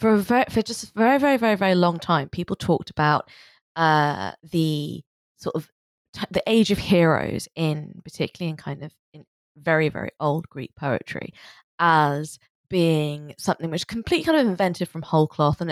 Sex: female